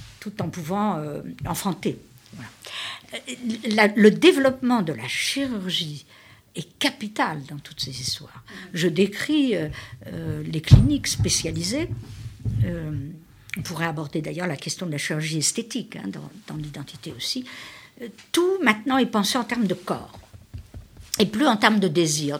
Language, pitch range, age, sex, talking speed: French, 140-220 Hz, 60-79, female, 150 wpm